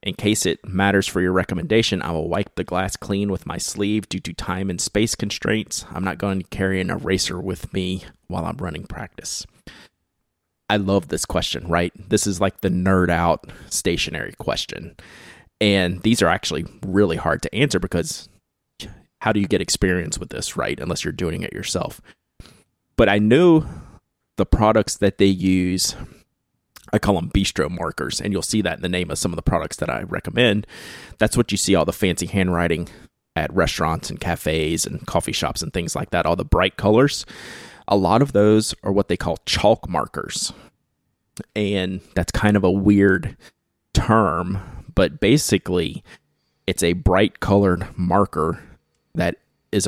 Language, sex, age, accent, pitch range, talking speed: English, male, 30-49, American, 90-105 Hz, 175 wpm